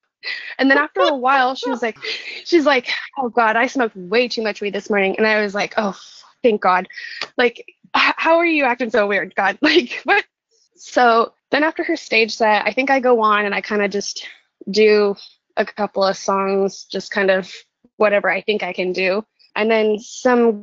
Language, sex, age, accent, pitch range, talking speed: English, female, 20-39, American, 205-260 Hz, 205 wpm